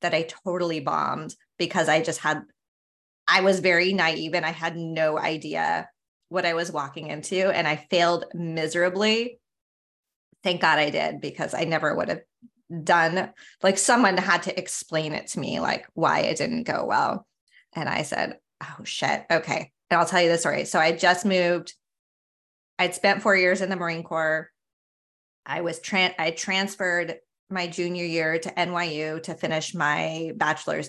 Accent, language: American, English